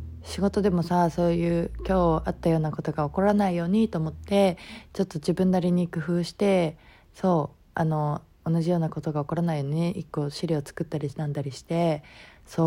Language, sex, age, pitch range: Japanese, female, 20-39, 155-195 Hz